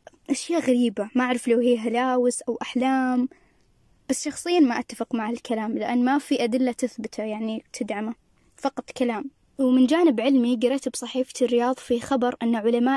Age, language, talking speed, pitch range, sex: 20-39, Arabic, 155 wpm, 235-270 Hz, female